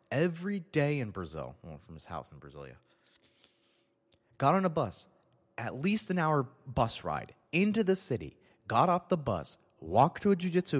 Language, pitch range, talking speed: English, 110-175 Hz, 180 wpm